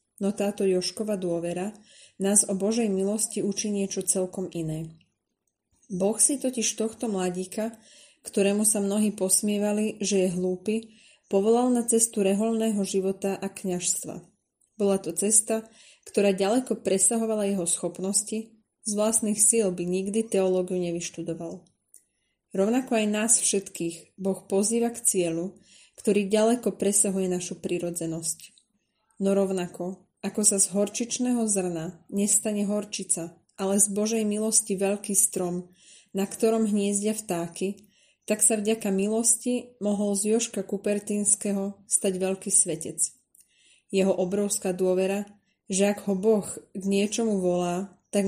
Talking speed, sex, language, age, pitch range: 125 wpm, female, Slovak, 20-39, 185-215 Hz